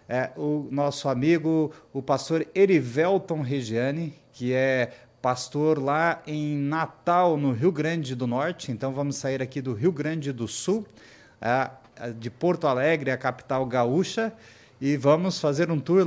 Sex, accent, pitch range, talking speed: male, Brazilian, 130-160 Hz, 140 wpm